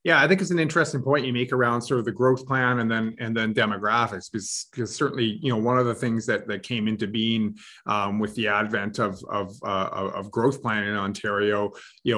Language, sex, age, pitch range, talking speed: English, male, 30-49, 105-125 Hz, 230 wpm